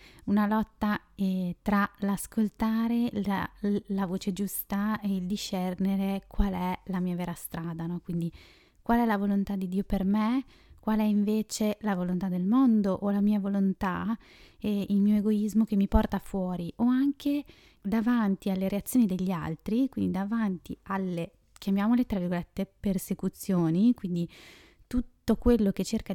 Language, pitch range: Italian, 185-220 Hz